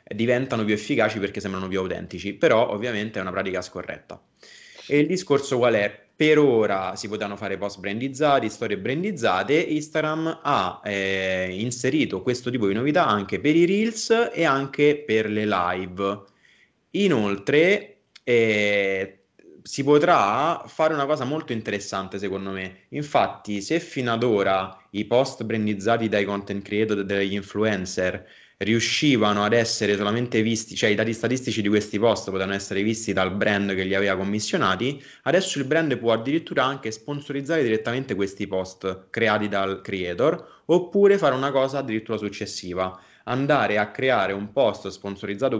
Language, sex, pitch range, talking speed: Italian, male, 100-135 Hz, 150 wpm